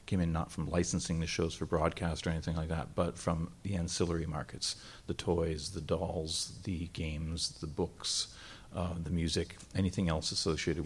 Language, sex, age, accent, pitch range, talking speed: English, male, 40-59, American, 80-95 Hz, 175 wpm